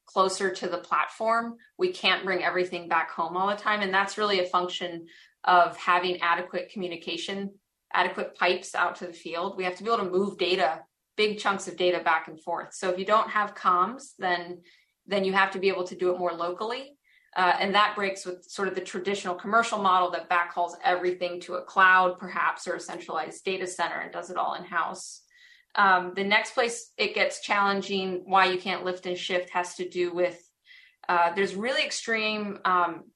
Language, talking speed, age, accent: English, 200 wpm, 20-39, American